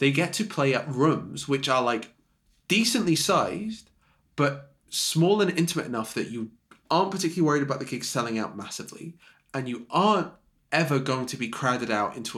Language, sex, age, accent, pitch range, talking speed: English, male, 20-39, British, 110-160 Hz, 180 wpm